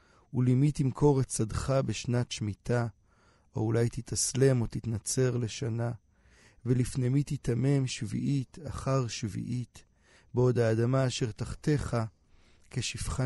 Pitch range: 110-130 Hz